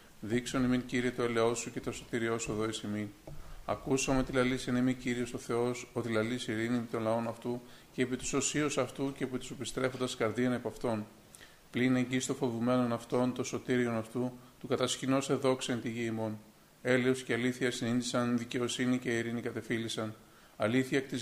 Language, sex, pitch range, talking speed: Greek, male, 115-130 Hz, 185 wpm